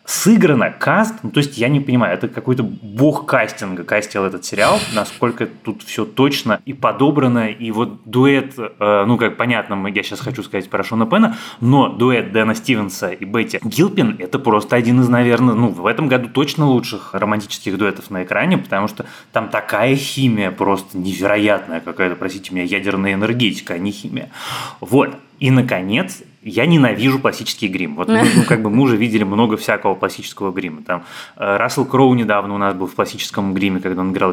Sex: male